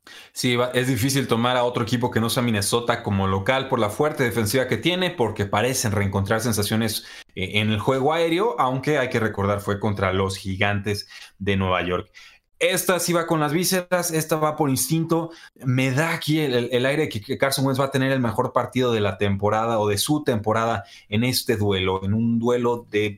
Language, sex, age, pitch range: Spanish, male, 30-49, 105-135 Hz